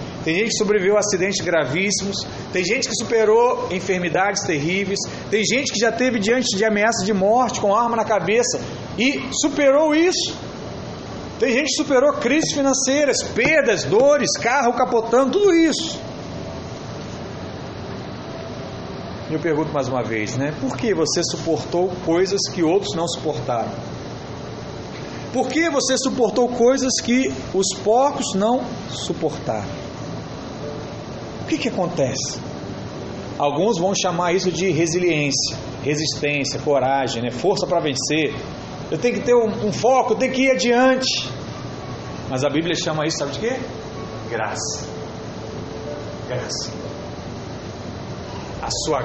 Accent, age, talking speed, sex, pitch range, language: Brazilian, 40-59, 130 wpm, male, 145-240 Hz, Portuguese